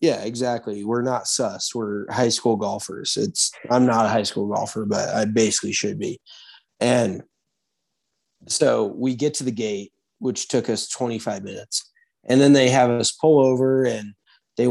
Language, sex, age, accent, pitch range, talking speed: English, male, 20-39, American, 110-130 Hz, 170 wpm